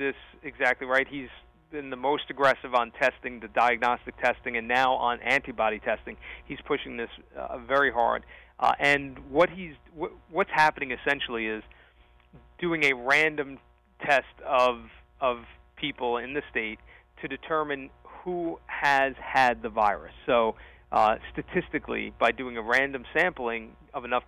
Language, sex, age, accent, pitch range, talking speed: English, male, 30-49, American, 115-140 Hz, 150 wpm